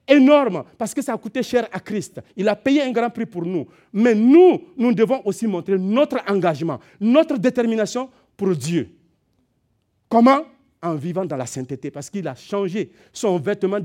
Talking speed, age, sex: 180 wpm, 50-69, male